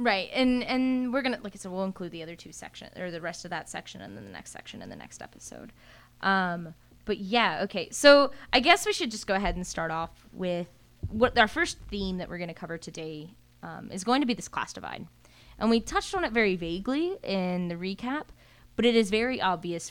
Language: English